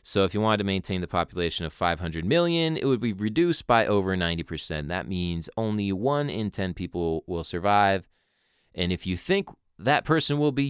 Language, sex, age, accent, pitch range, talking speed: English, male, 30-49, American, 90-135 Hz, 195 wpm